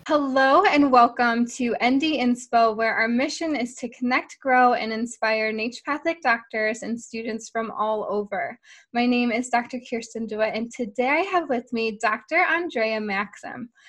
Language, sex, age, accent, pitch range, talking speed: English, female, 20-39, American, 225-285 Hz, 155 wpm